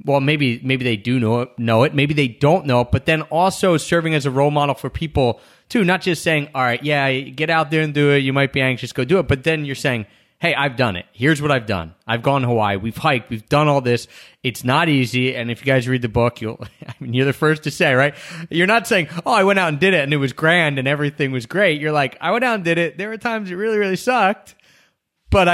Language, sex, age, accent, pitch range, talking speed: English, male, 30-49, American, 125-160 Hz, 280 wpm